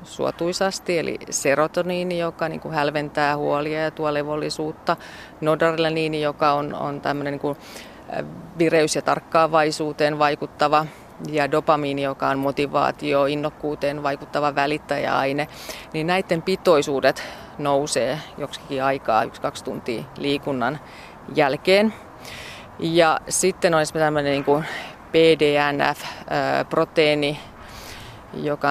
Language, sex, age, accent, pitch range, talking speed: Finnish, female, 30-49, native, 145-160 Hz, 100 wpm